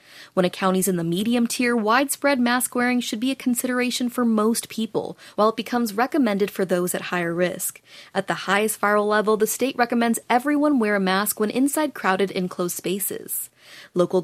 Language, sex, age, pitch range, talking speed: English, female, 30-49, 180-230 Hz, 185 wpm